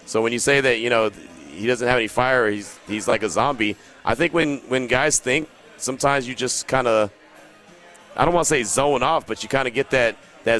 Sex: male